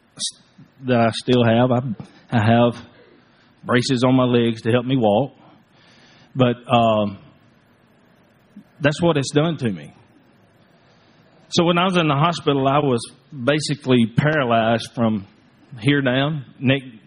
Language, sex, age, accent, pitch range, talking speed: English, male, 40-59, American, 115-145 Hz, 135 wpm